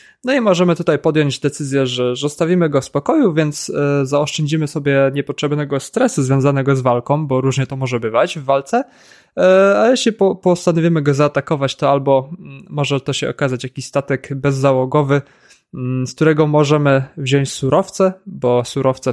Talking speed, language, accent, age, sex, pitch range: 150 wpm, Polish, native, 20-39, male, 125-150 Hz